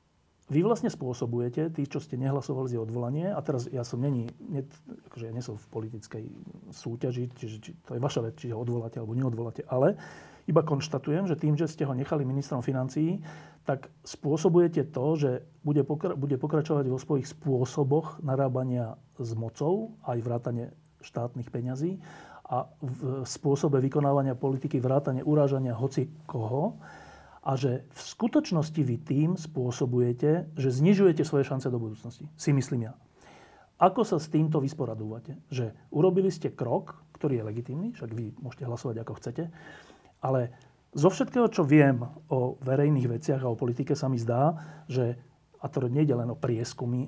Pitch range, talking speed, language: 125-155 Hz, 160 wpm, Slovak